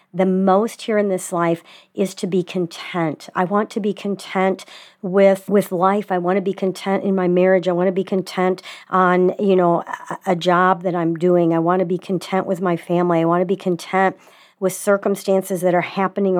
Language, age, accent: English, 50-69, American